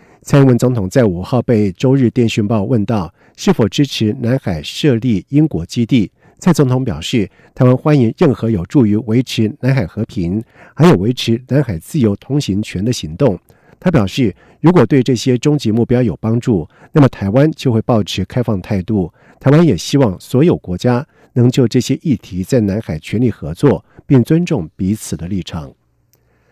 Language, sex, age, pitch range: German, male, 50-69, 105-140 Hz